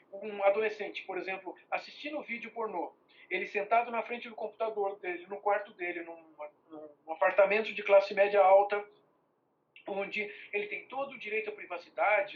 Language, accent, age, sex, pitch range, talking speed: Portuguese, Brazilian, 50-69, male, 185-290 Hz, 160 wpm